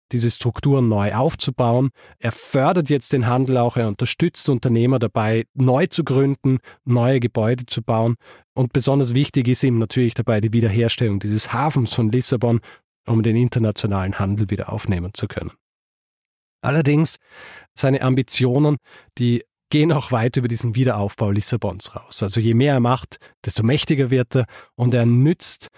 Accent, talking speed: German, 155 wpm